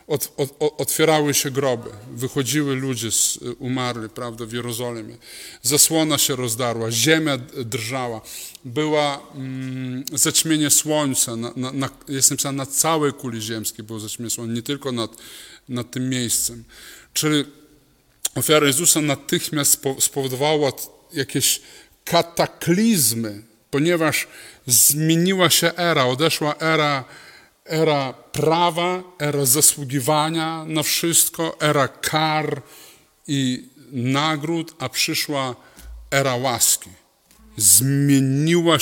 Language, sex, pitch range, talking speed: Polish, male, 125-155 Hz, 105 wpm